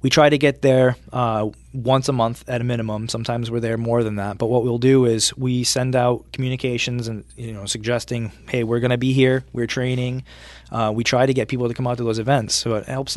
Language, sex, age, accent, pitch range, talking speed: English, male, 20-39, American, 110-125 Hz, 245 wpm